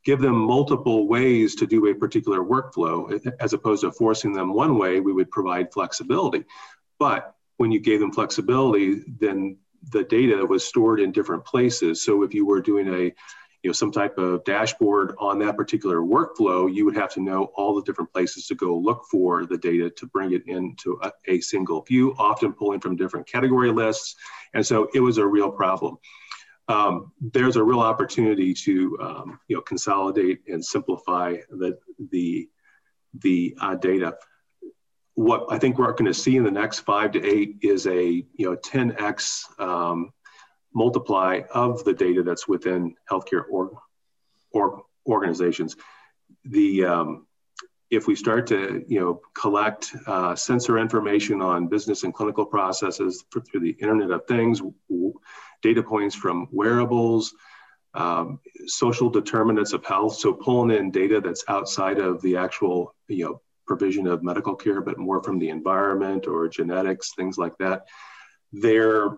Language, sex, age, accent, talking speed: English, male, 40-59, American, 160 wpm